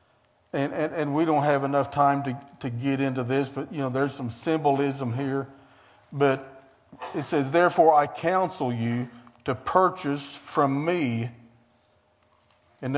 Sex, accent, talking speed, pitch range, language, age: male, American, 150 wpm, 125-155 Hz, English, 50-69